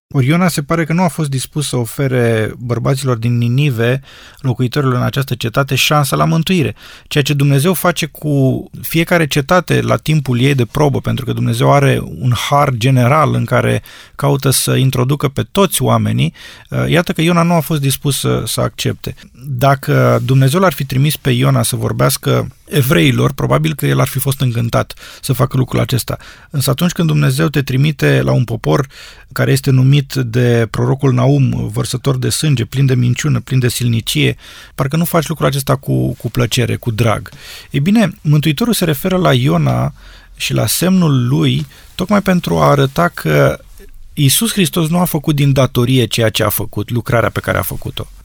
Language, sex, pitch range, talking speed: Romanian, male, 125-150 Hz, 180 wpm